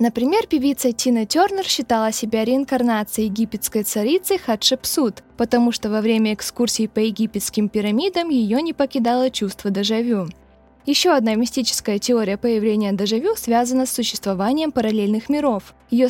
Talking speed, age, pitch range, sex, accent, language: 130 wpm, 20-39, 215-280 Hz, female, native, Russian